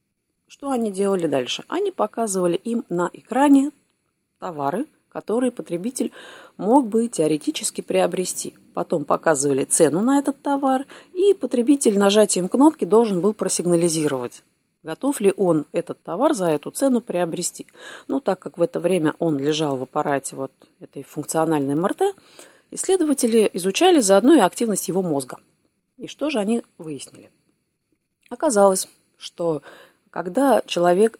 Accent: native